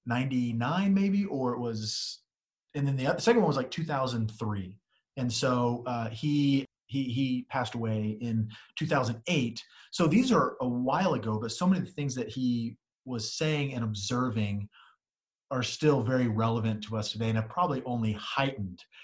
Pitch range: 110-140 Hz